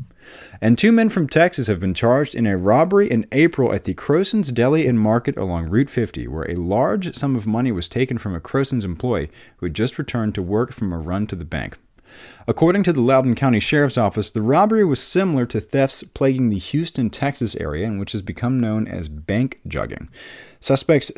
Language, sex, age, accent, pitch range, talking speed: English, male, 40-59, American, 95-130 Hz, 205 wpm